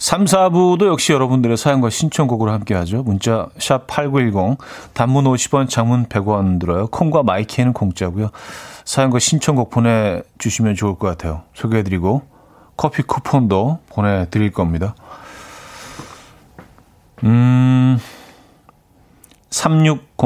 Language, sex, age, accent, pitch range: Korean, male, 40-59, native, 100-140 Hz